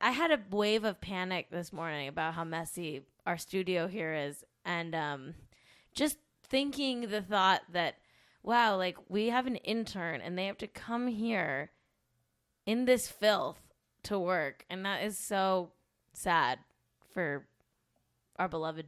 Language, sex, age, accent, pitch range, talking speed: English, female, 10-29, American, 160-205 Hz, 150 wpm